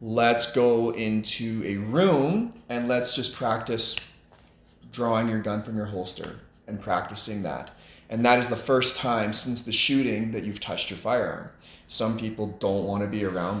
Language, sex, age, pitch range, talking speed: English, male, 20-39, 95-115 Hz, 170 wpm